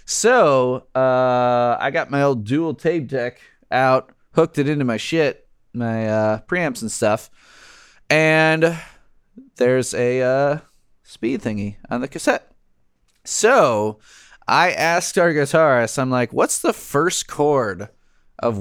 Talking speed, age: 130 wpm, 30-49